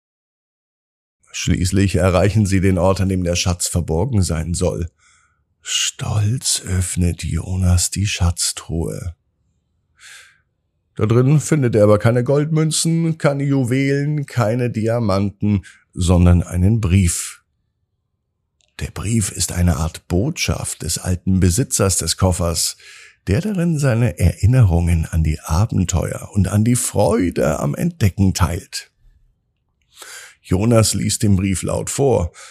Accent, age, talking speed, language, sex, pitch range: German, 50-69, 115 wpm, German, male, 90-120 Hz